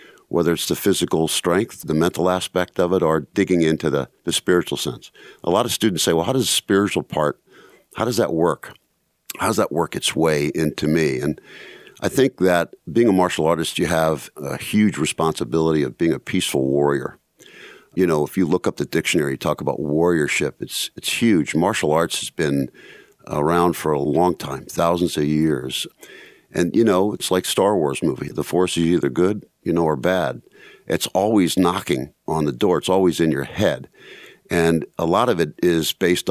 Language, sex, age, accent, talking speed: English, male, 50-69, American, 200 wpm